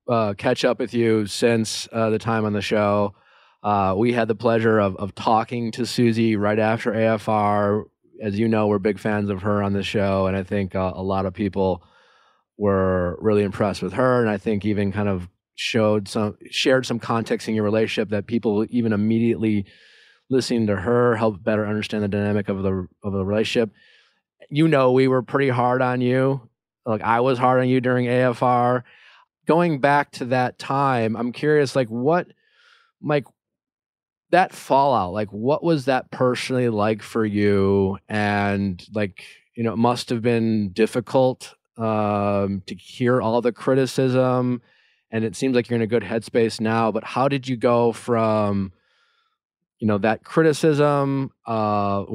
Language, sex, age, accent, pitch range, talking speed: English, male, 30-49, American, 105-125 Hz, 175 wpm